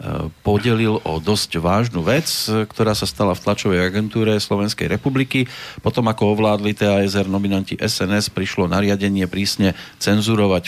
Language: Slovak